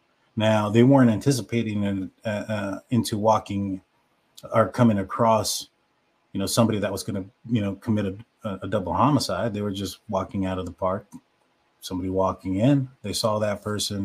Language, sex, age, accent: English, male, 30-49, American